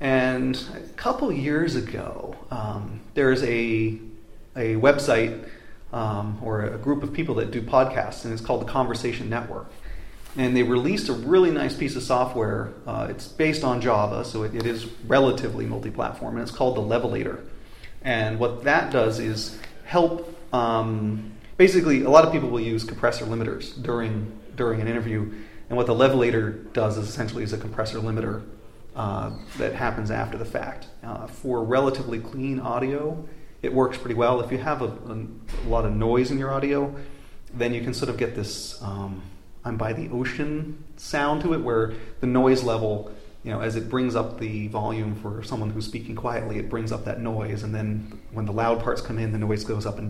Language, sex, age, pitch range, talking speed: English, male, 30-49, 110-130 Hz, 185 wpm